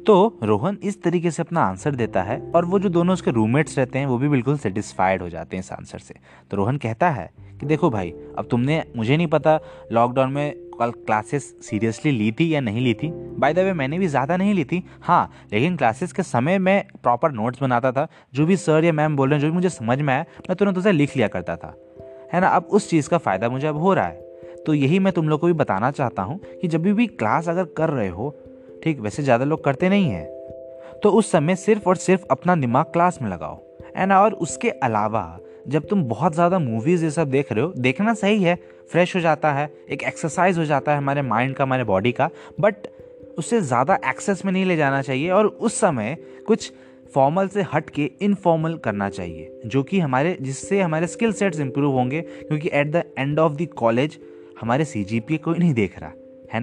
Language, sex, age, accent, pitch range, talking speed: Hindi, male, 20-39, native, 120-175 Hz, 225 wpm